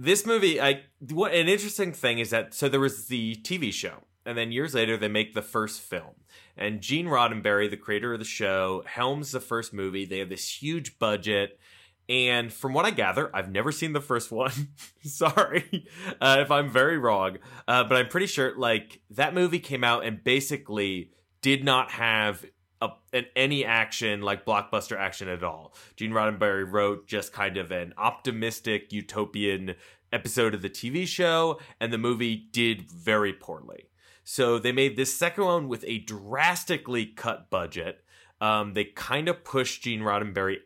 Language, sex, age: English, male, 20-39